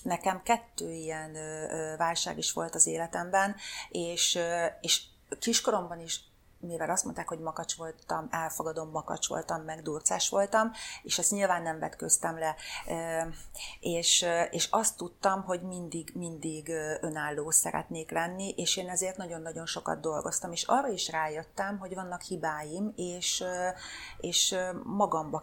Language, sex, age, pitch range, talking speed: Hungarian, female, 30-49, 160-185 Hz, 125 wpm